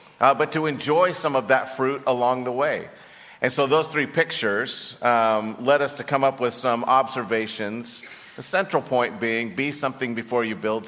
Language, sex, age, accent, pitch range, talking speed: English, male, 50-69, American, 125-150 Hz, 190 wpm